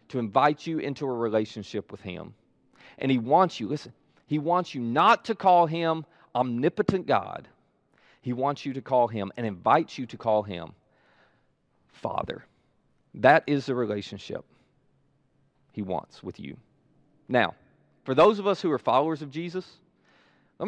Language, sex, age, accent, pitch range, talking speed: English, male, 40-59, American, 120-185 Hz, 155 wpm